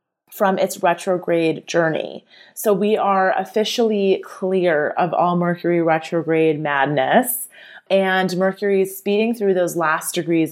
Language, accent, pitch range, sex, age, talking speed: English, American, 165-205 Hz, female, 30-49, 125 wpm